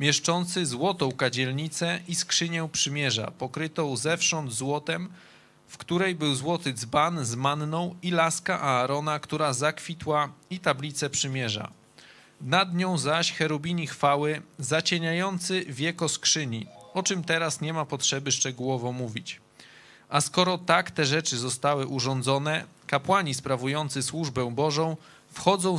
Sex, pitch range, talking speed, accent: male, 140-170 Hz, 120 wpm, native